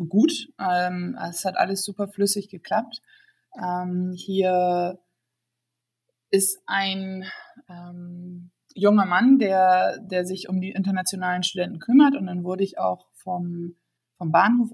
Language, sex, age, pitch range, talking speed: German, female, 20-39, 170-205 Hz, 125 wpm